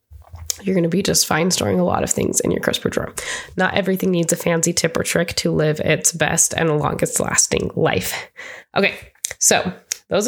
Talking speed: 200 wpm